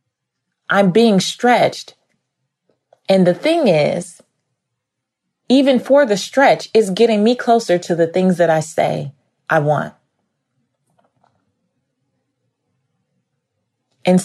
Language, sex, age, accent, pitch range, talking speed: English, female, 30-49, American, 155-195 Hz, 100 wpm